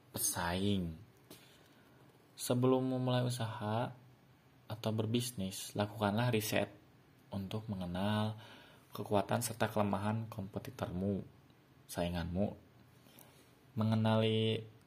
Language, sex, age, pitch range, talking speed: Indonesian, male, 30-49, 100-130 Hz, 65 wpm